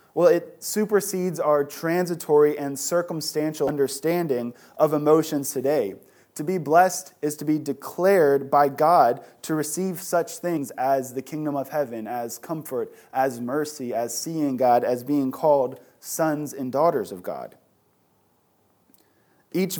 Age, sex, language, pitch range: 20-39, male, English, 135-165 Hz